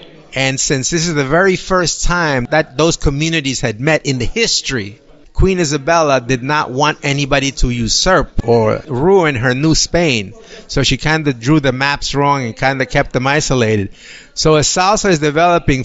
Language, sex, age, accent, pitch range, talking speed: English, male, 50-69, American, 125-165 Hz, 180 wpm